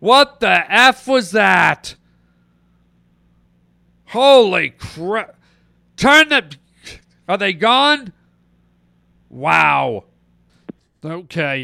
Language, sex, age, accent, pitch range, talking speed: English, male, 50-69, American, 130-185 Hz, 70 wpm